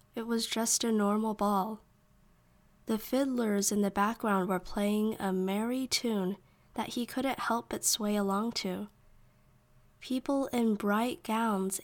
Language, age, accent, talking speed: English, 10-29, American, 140 wpm